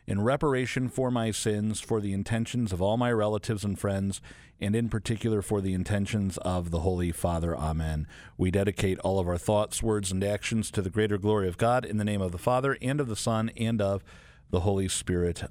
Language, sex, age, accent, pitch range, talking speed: English, male, 50-69, American, 85-110 Hz, 215 wpm